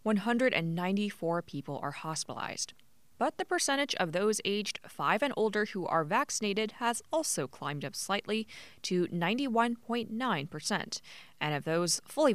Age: 20-39